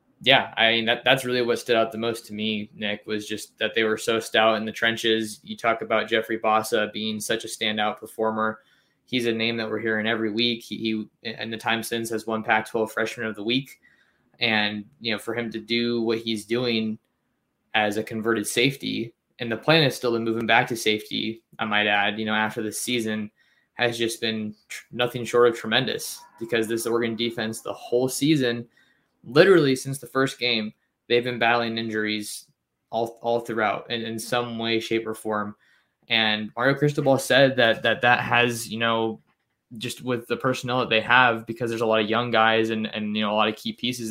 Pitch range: 110-120 Hz